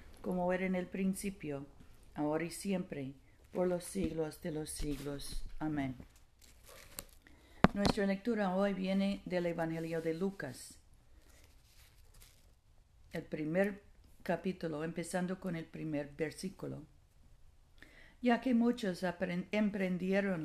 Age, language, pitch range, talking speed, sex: 50-69, Spanish, 150-185 Hz, 105 wpm, female